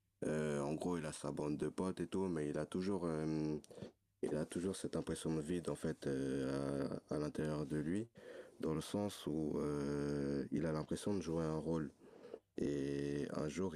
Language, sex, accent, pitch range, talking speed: French, male, French, 75-90 Hz, 200 wpm